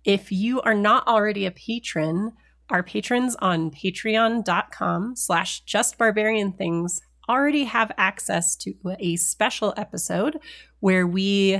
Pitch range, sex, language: 170-220 Hz, female, English